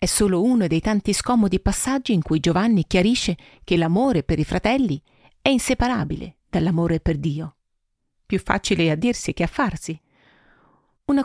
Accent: native